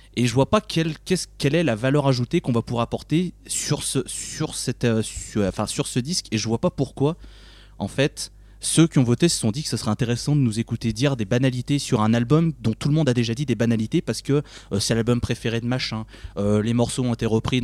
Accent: French